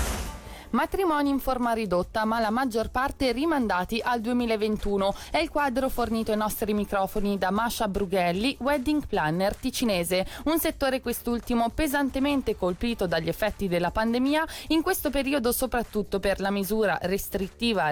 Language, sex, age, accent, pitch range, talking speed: Italian, female, 20-39, native, 175-230 Hz, 135 wpm